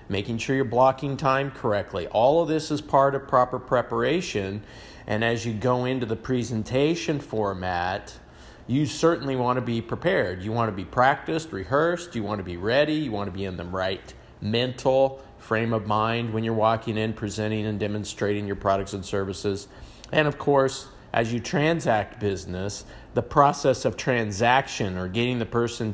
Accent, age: American, 40-59